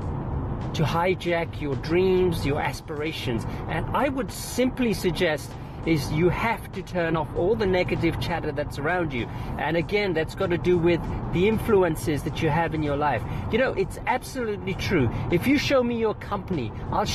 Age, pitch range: 40-59, 150-200 Hz